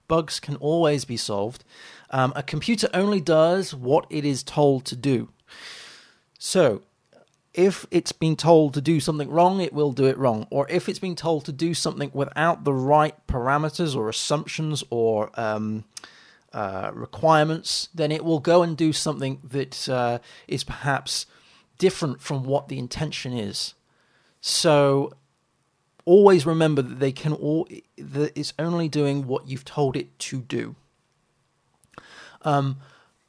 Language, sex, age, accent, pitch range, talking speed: English, male, 30-49, British, 130-160 Hz, 150 wpm